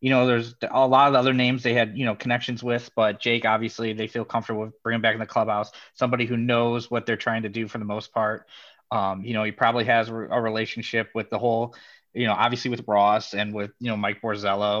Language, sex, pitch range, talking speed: English, male, 110-145 Hz, 245 wpm